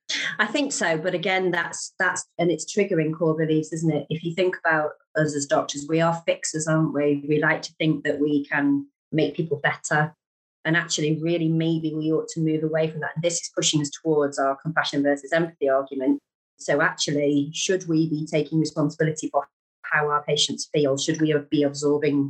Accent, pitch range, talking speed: British, 140-160 Hz, 195 wpm